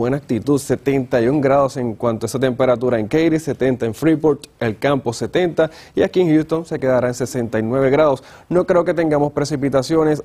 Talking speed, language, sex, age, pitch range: 180 wpm, Spanish, male, 30-49, 125-150 Hz